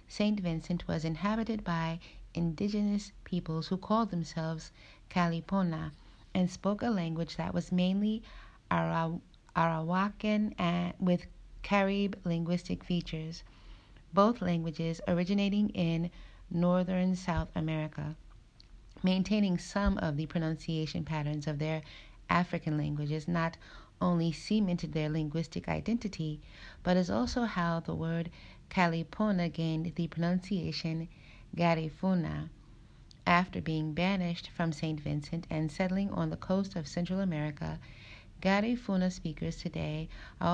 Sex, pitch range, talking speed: female, 155-185 Hz, 110 wpm